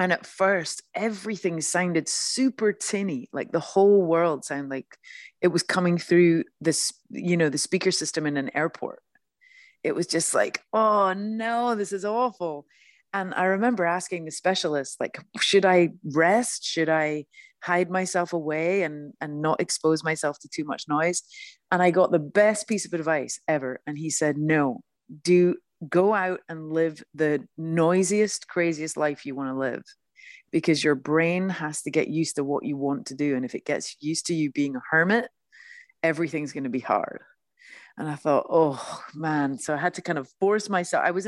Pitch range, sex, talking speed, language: 150-190 Hz, female, 185 wpm, English